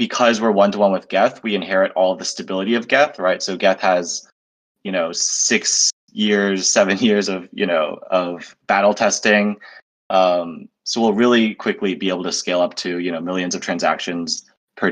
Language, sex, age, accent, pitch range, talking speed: English, male, 20-39, American, 95-110 Hz, 180 wpm